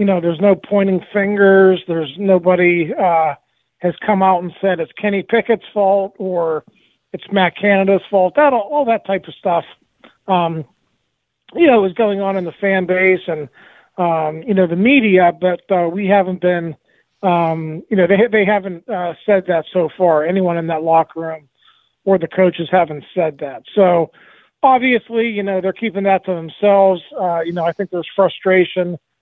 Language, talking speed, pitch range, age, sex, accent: English, 180 wpm, 170-200 Hz, 40-59, male, American